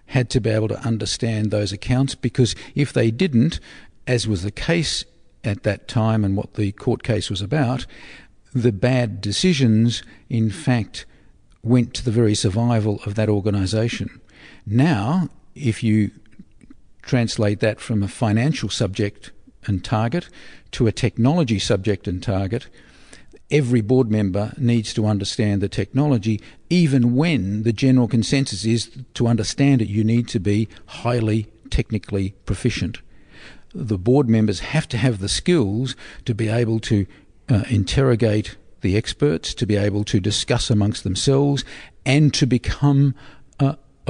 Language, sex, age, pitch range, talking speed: English, male, 50-69, 105-130 Hz, 145 wpm